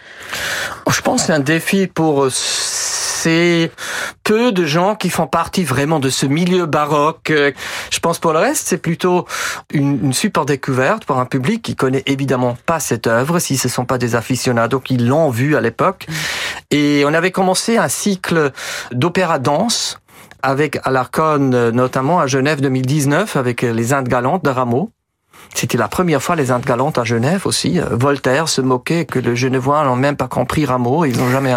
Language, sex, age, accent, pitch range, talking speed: French, male, 40-59, French, 130-180 Hz, 175 wpm